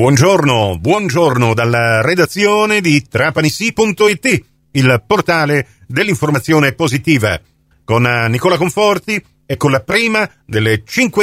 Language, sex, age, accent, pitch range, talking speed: Italian, male, 40-59, native, 125-180 Hz, 100 wpm